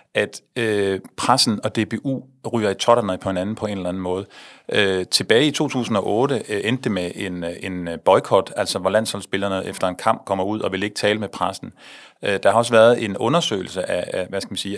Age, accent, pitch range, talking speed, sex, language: 30-49, native, 100-130 Hz, 210 wpm, male, Danish